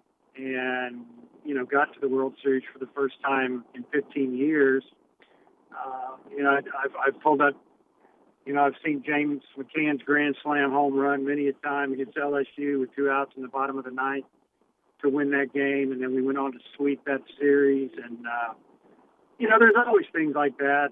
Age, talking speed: 50-69, 195 wpm